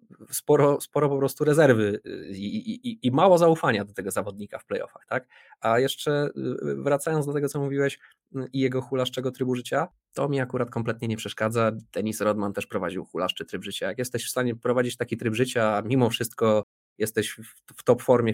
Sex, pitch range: male, 105-130 Hz